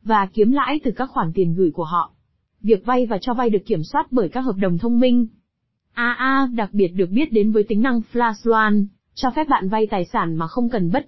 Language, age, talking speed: Vietnamese, 20-39, 240 wpm